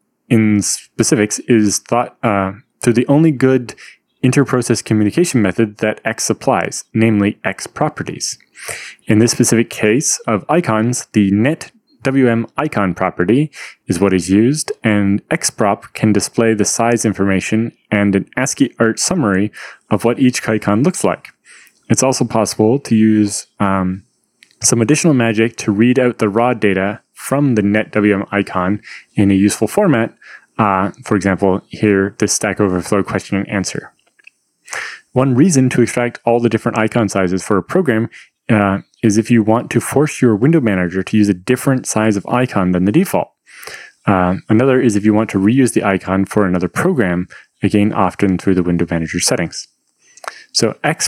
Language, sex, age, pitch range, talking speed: English, male, 20-39, 100-120 Hz, 165 wpm